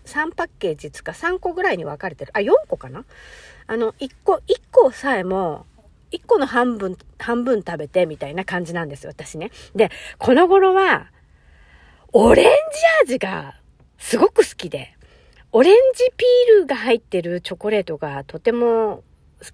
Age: 40-59